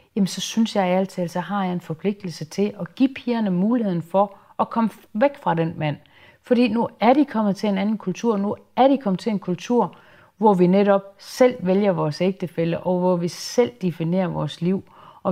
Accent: native